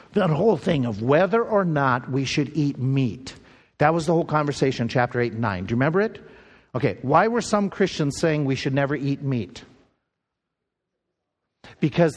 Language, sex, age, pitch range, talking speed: English, male, 50-69, 130-160 Hz, 180 wpm